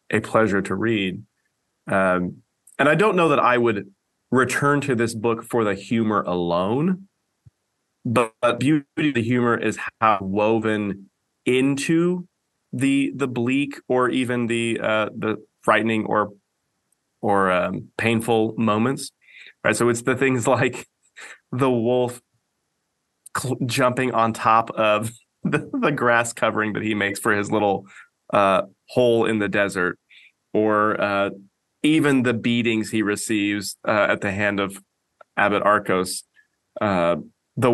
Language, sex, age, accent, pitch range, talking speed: English, male, 30-49, American, 100-125 Hz, 140 wpm